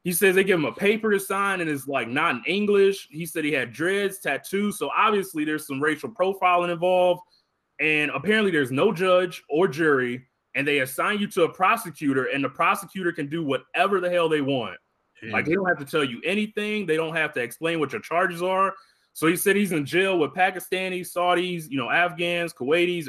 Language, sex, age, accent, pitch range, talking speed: English, male, 20-39, American, 145-195 Hz, 215 wpm